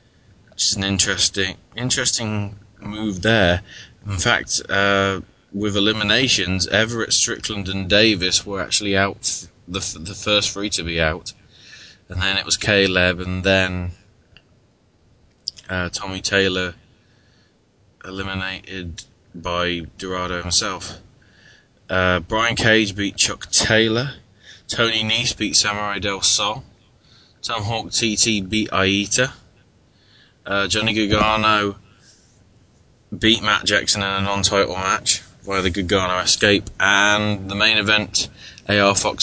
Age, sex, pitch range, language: 20-39, male, 95-110 Hz, English